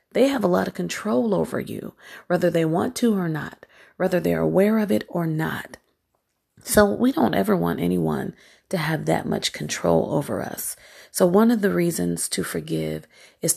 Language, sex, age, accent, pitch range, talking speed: English, female, 40-59, American, 140-200 Hz, 185 wpm